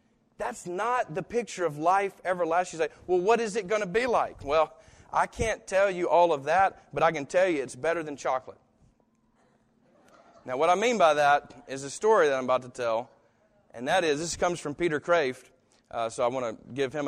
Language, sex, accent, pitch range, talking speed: English, male, American, 130-190 Hz, 220 wpm